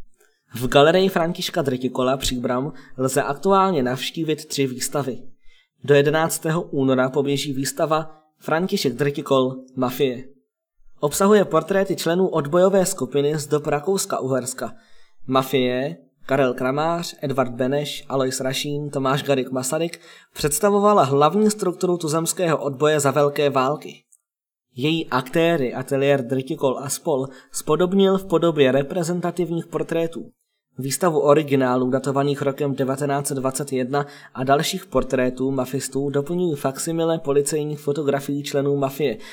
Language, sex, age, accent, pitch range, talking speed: Czech, male, 20-39, native, 135-165 Hz, 110 wpm